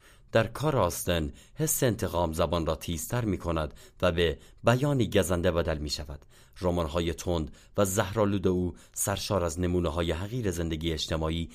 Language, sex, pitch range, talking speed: Persian, male, 85-110 Hz, 155 wpm